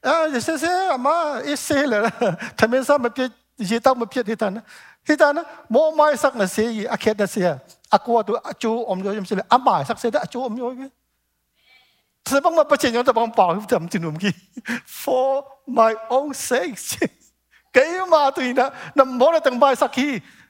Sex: male